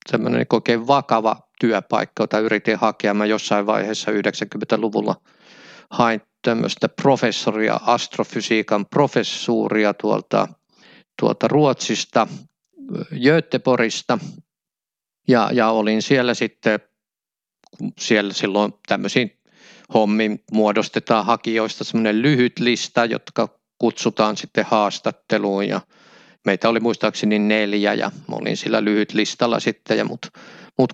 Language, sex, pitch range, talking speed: Finnish, male, 105-125 Hz, 100 wpm